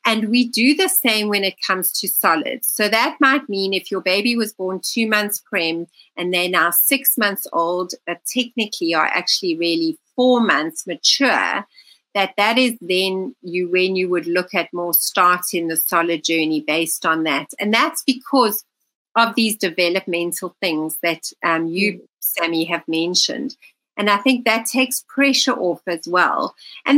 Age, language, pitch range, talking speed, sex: 40-59, English, 175-235 Hz, 175 wpm, female